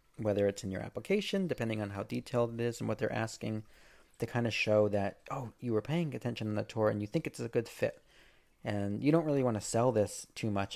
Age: 30-49